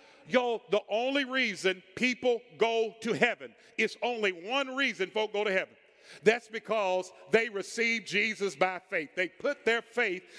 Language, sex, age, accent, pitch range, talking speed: English, male, 50-69, American, 205-255 Hz, 155 wpm